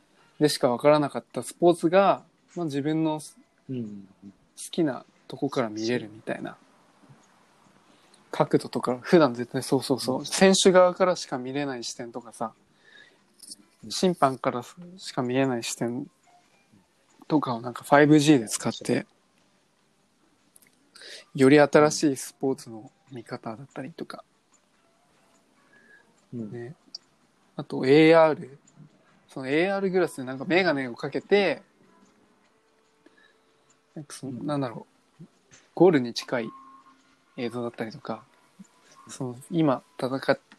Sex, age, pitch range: male, 20-39, 125-165 Hz